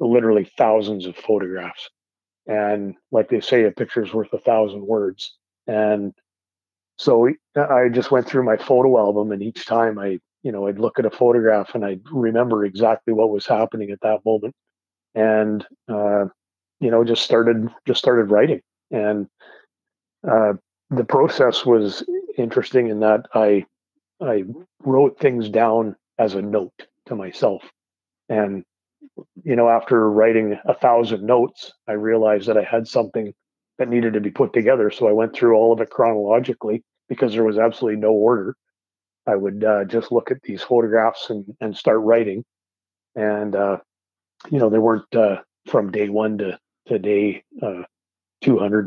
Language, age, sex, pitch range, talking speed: English, 40-59, male, 105-115 Hz, 165 wpm